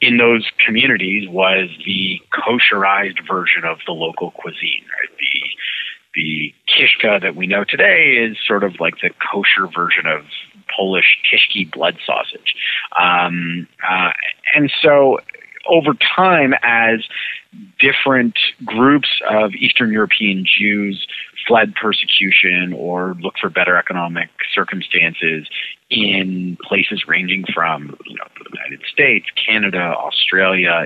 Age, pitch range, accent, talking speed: 30-49, 90-120 Hz, American, 125 wpm